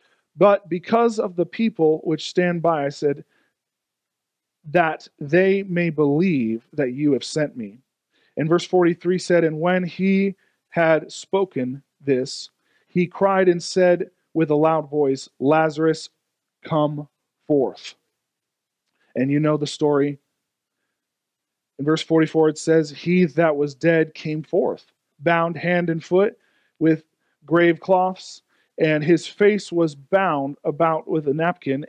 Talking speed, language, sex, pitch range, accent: 135 wpm, English, male, 150-180 Hz, American